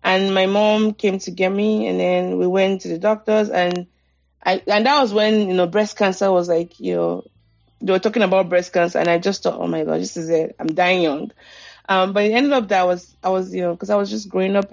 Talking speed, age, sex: 265 wpm, 30-49, female